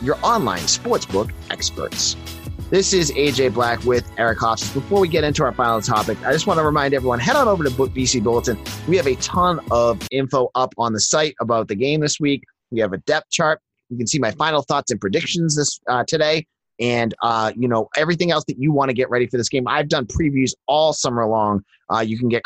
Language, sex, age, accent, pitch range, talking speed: English, male, 30-49, American, 115-155 Hz, 230 wpm